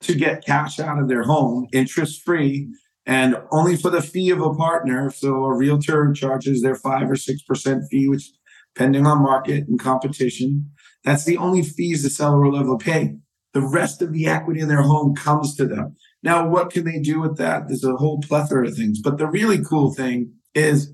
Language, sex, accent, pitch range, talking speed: English, male, American, 130-150 Hz, 205 wpm